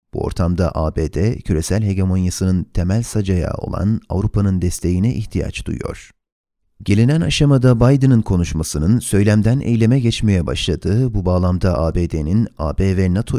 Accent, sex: native, male